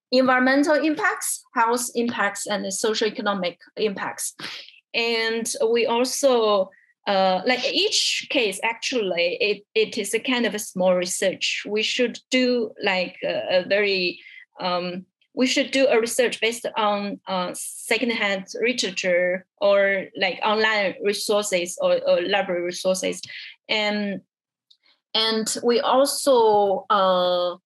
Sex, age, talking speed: female, 20-39, 120 wpm